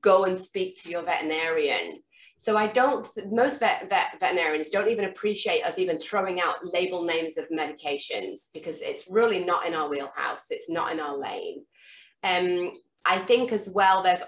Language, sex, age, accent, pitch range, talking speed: English, female, 30-49, British, 170-210 Hz, 180 wpm